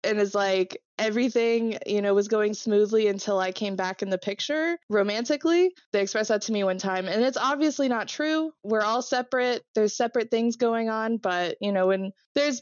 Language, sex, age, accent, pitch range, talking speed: English, female, 20-39, American, 175-220 Hz, 200 wpm